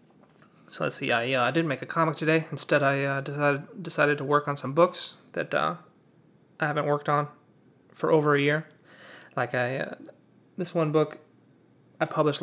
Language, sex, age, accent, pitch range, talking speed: English, male, 30-49, American, 135-160 Hz, 185 wpm